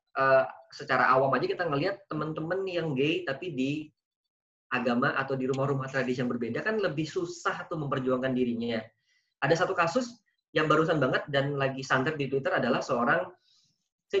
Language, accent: Indonesian, native